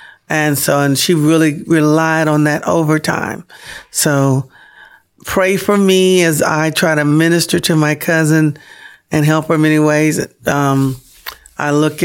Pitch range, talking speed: 150-185 Hz, 150 wpm